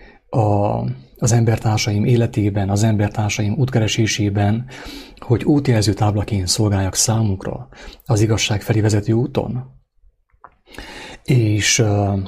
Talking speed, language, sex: 85 wpm, English, male